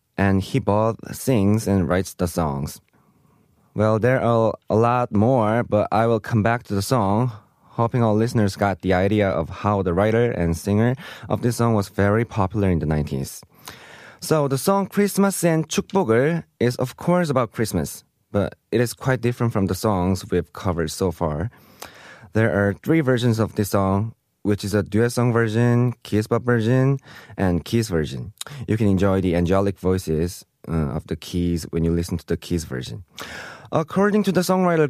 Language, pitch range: Korean, 95-125 Hz